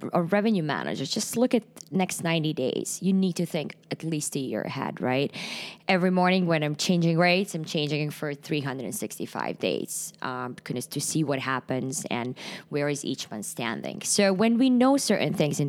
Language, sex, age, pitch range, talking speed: English, female, 20-39, 150-195 Hz, 185 wpm